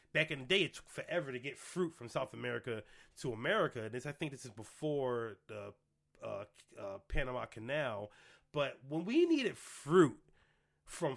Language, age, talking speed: English, 30-49, 170 wpm